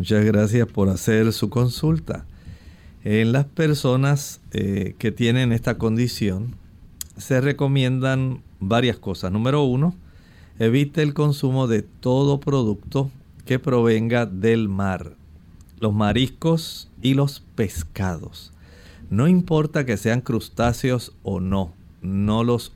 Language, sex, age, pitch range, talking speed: Spanish, male, 50-69, 100-130 Hz, 115 wpm